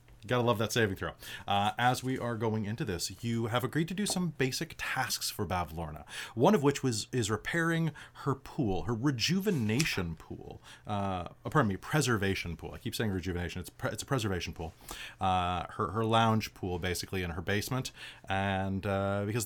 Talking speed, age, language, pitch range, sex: 190 wpm, 30-49, English, 100-125 Hz, male